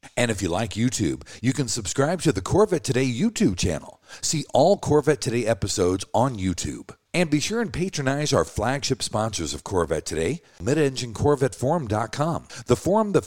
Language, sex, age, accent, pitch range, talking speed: English, male, 50-69, American, 110-160 Hz, 165 wpm